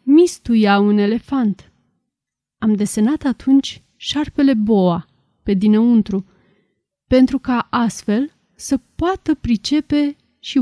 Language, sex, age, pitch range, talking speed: Romanian, female, 30-49, 205-270 Hz, 95 wpm